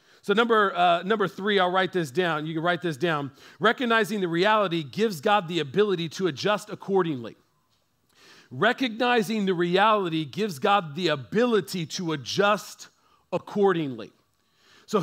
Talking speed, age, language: 140 wpm, 40-59, English